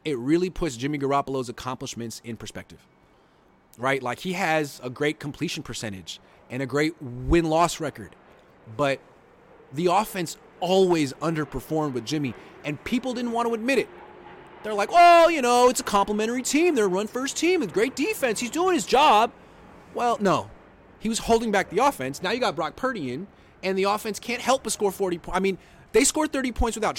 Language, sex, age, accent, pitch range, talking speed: English, male, 30-49, American, 135-195 Hz, 190 wpm